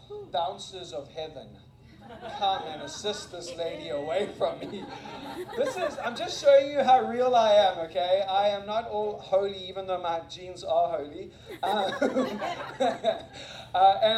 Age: 30-49